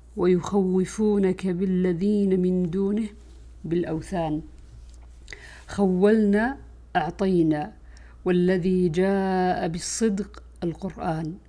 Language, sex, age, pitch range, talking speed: Arabic, female, 50-69, 165-200 Hz, 55 wpm